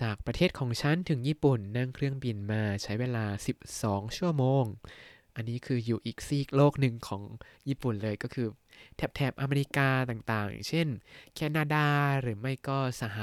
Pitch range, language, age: 110-145 Hz, Thai, 20-39